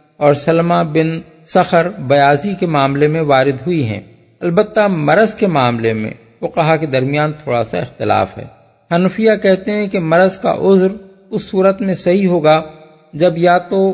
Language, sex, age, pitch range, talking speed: Urdu, male, 50-69, 145-185 Hz, 170 wpm